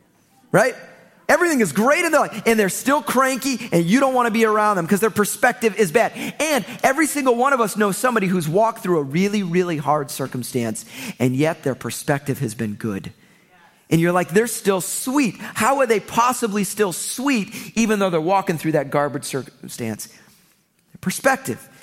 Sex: male